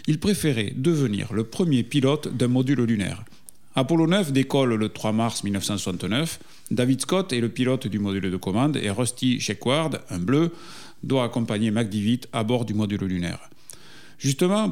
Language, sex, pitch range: French, male, 115-150 Hz